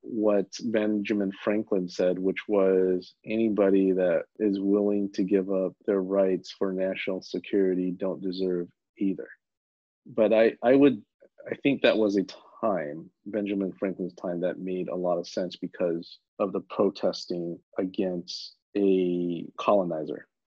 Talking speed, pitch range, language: 140 wpm, 90-105 Hz, English